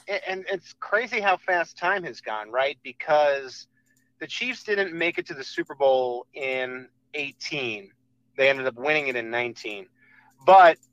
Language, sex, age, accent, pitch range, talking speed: English, male, 30-49, American, 130-165 Hz, 160 wpm